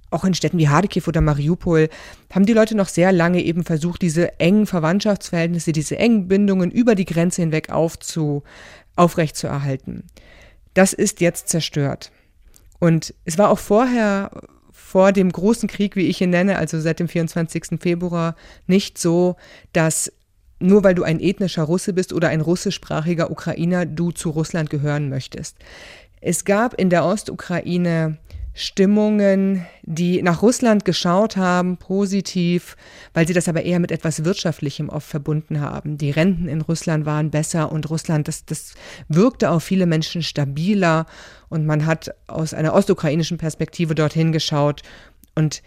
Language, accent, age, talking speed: German, German, 30-49, 155 wpm